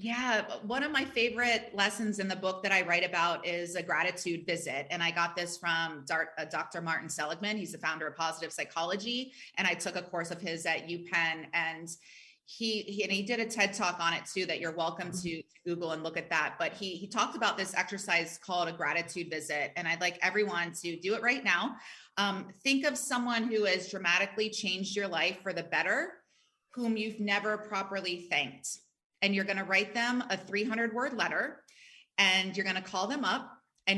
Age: 30-49